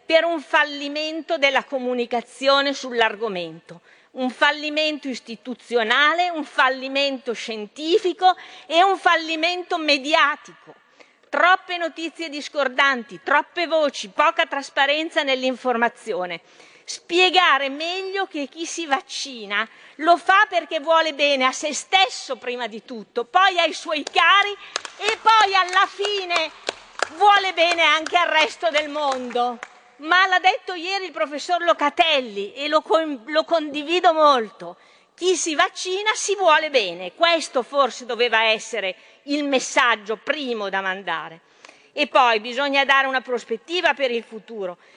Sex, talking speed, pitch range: female, 125 wpm, 245-335 Hz